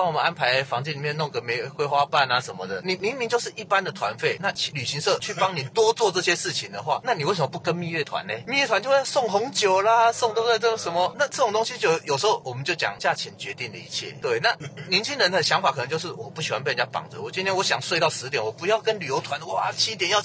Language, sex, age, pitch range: Chinese, male, 30-49, 150-225 Hz